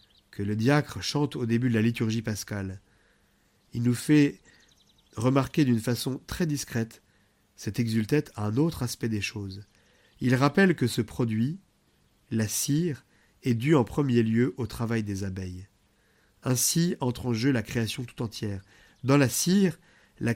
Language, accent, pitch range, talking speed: French, French, 105-140 Hz, 160 wpm